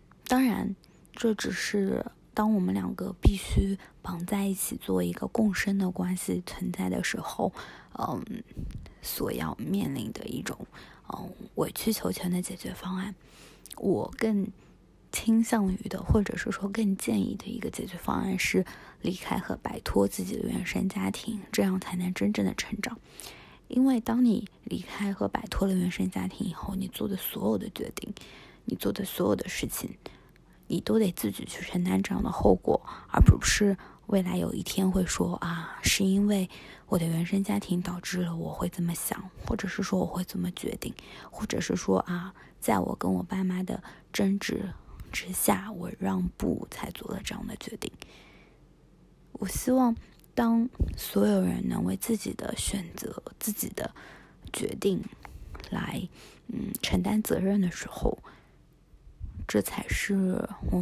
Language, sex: Chinese, female